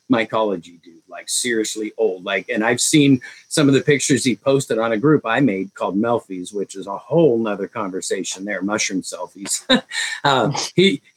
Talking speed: 175 wpm